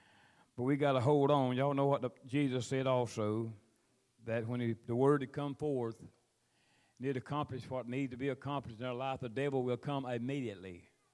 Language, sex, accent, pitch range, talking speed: English, male, American, 120-155 Hz, 200 wpm